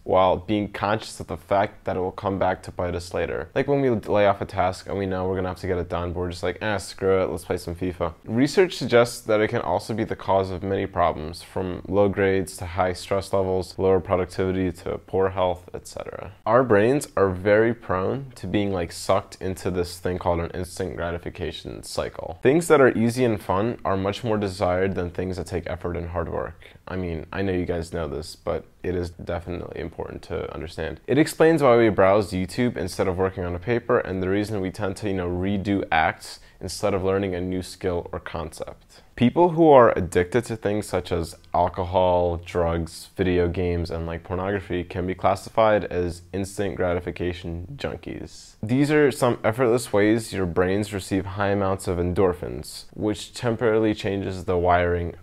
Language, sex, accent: English, male, American